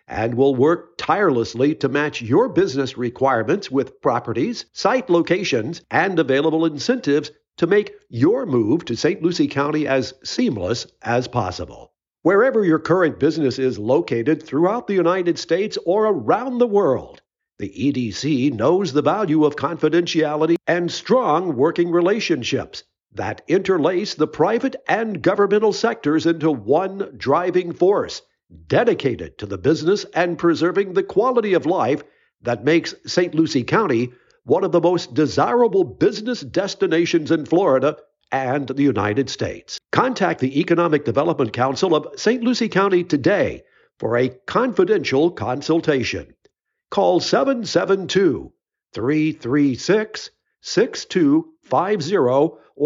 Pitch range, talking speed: 140-210 Hz, 125 wpm